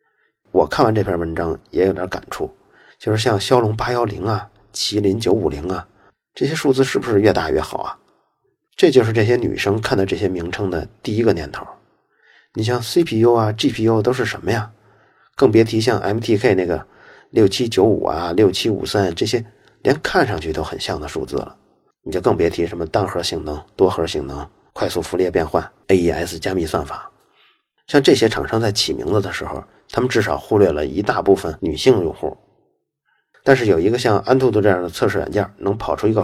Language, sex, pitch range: Chinese, male, 95-120 Hz